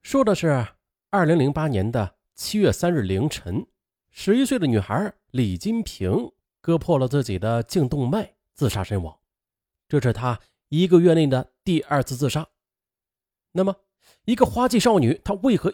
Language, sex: Chinese, male